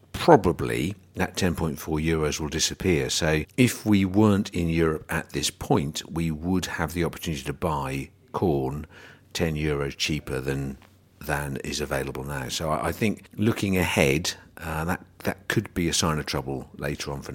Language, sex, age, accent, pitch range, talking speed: English, male, 50-69, British, 75-95 Hz, 170 wpm